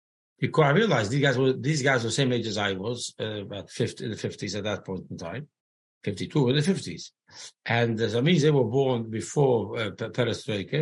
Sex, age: male, 50-69